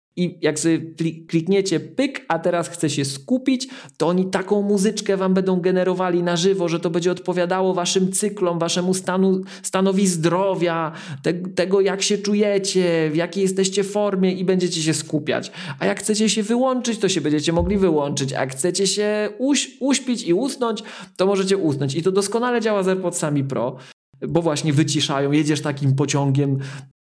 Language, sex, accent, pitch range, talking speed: Polish, male, native, 140-185 Hz, 165 wpm